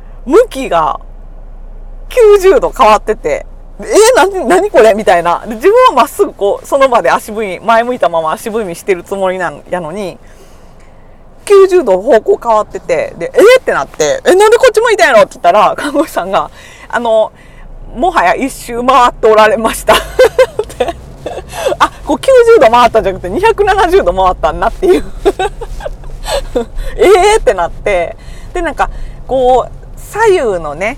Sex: female